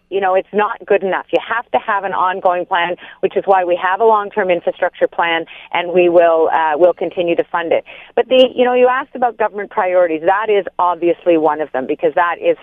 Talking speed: 235 wpm